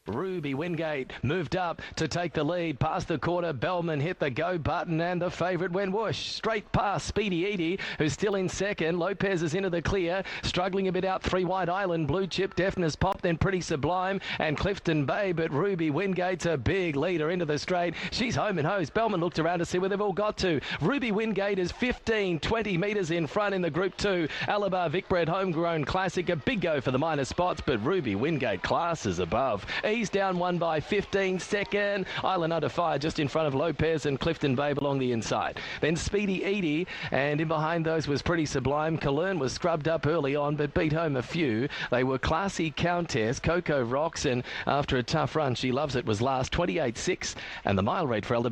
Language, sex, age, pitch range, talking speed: English, male, 40-59, 150-190 Hz, 205 wpm